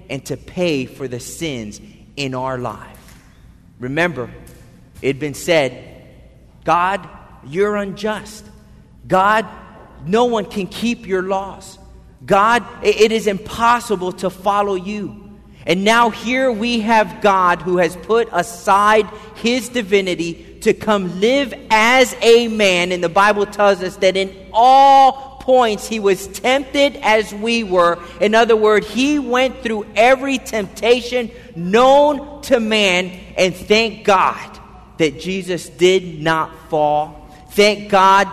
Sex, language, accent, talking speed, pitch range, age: male, English, American, 130 wpm, 180-230 Hz, 40-59